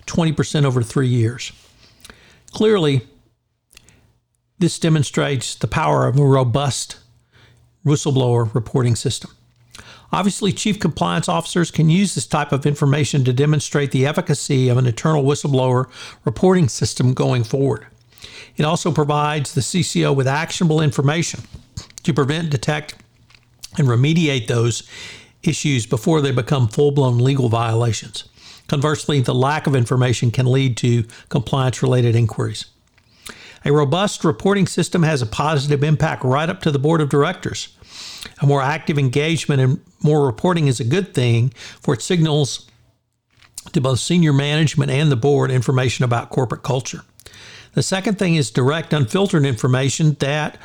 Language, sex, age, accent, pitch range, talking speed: English, male, 60-79, American, 120-155 Hz, 135 wpm